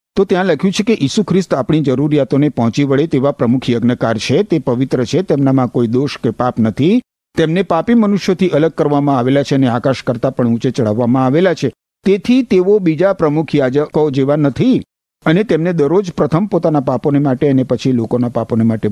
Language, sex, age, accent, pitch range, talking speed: Gujarati, male, 50-69, native, 130-185 Hz, 150 wpm